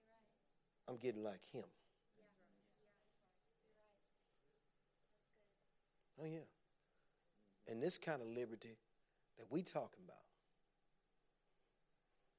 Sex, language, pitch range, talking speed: male, English, 120-160 Hz, 75 wpm